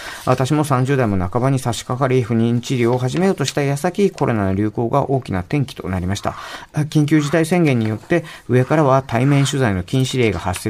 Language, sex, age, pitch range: Japanese, male, 40-59, 110-140 Hz